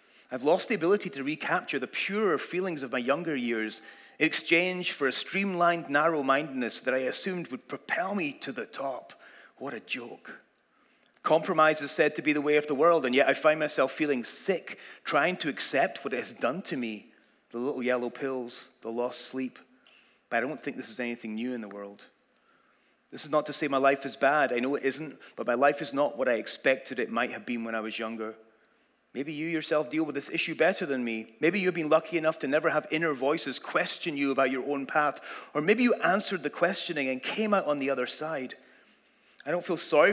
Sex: male